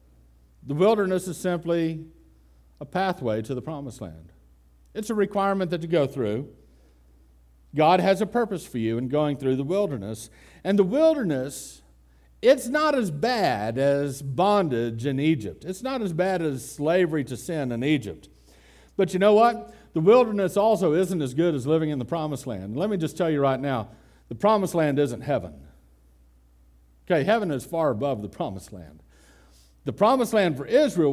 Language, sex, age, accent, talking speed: English, male, 50-69, American, 175 wpm